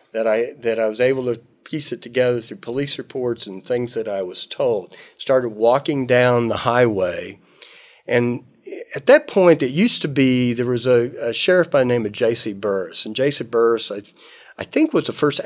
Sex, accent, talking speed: male, American, 200 wpm